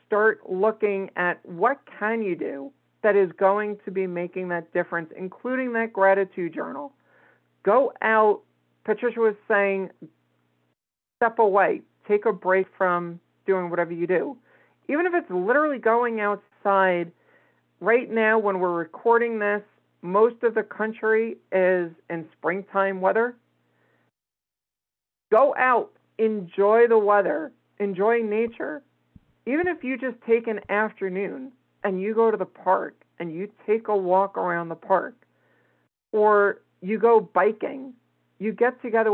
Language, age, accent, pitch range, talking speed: English, 50-69, American, 180-230 Hz, 135 wpm